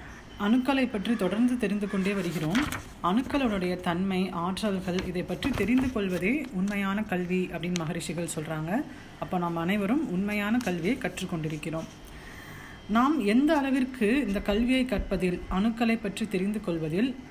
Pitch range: 175-245 Hz